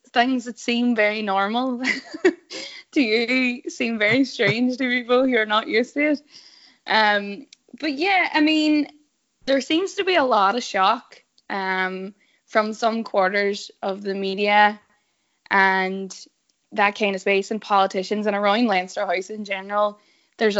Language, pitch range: English, 200-250 Hz